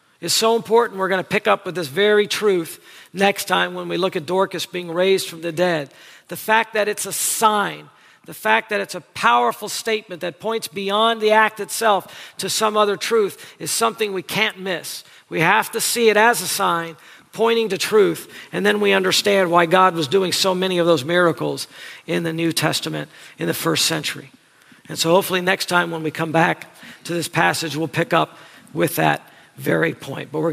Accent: American